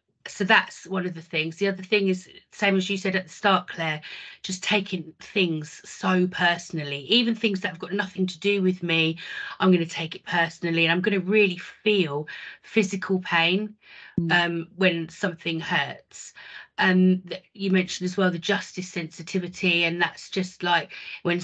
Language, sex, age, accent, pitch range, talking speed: English, female, 30-49, British, 175-200 Hz, 180 wpm